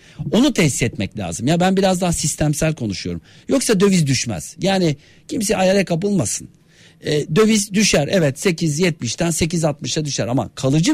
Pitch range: 145-200 Hz